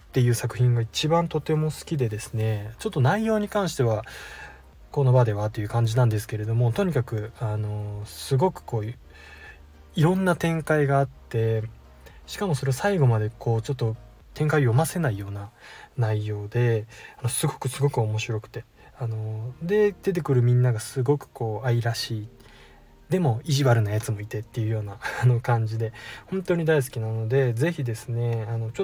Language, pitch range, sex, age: Japanese, 110-145 Hz, male, 20-39